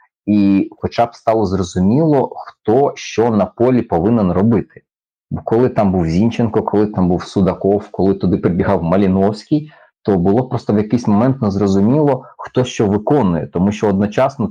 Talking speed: 155 wpm